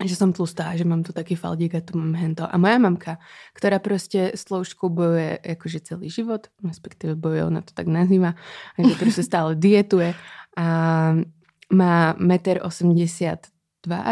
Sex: female